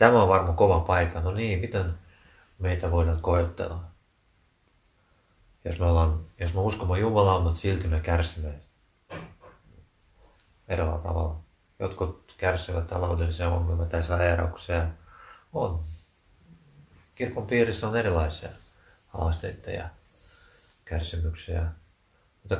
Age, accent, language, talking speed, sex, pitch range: 30-49, native, Finnish, 100 wpm, male, 85-95 Hz